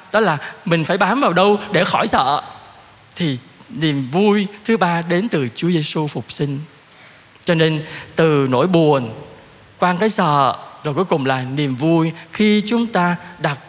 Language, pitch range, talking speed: Vietnamese, 135-205 Hz, 170 wpm